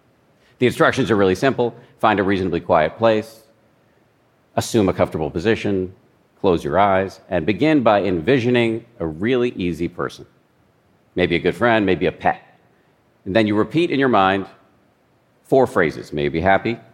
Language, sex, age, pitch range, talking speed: English, male, 50-69, 85-110 Hz, 160 wpm